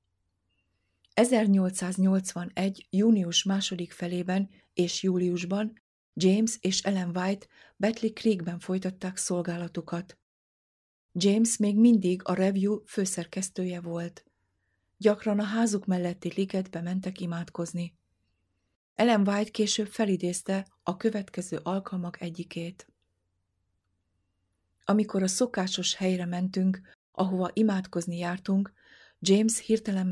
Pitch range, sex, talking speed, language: 175-200 Hz, female, 90 wpm, Hungarian